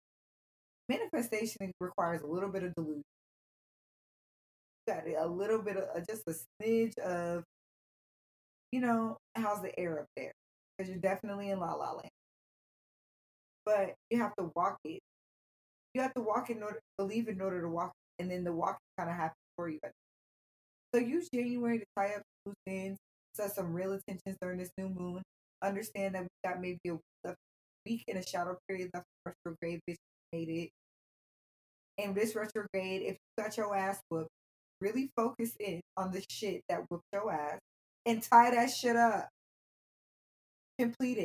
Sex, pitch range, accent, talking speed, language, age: female, 180-220 Hz, American, 175 wpm, English, 20-39